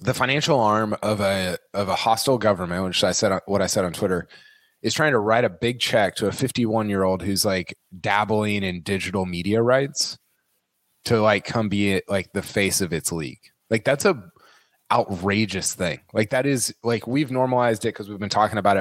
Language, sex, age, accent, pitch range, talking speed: English, male, 20-39, American, 100-140 Hz, 205 wpm